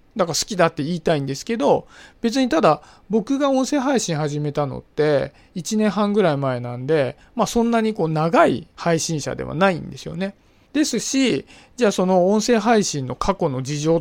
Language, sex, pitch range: Japanese, male, 145-210 Hz